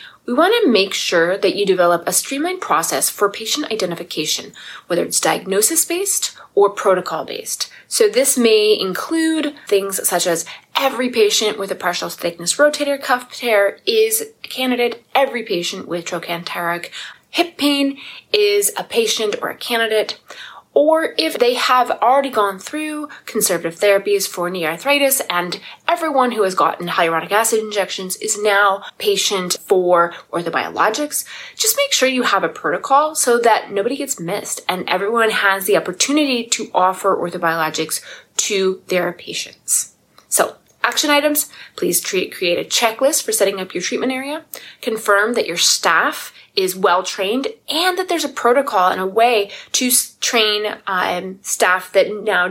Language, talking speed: English, 150 wpm